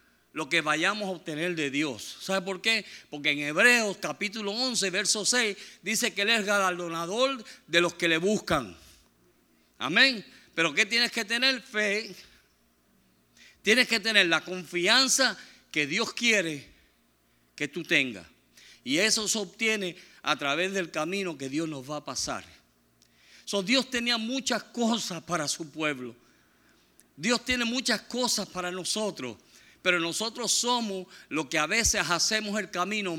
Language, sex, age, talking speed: Spanish, male, 50-69, 150 wpm